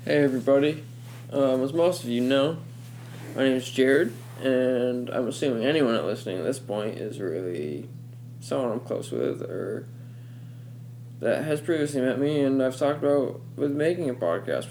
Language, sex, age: English, male, 20-39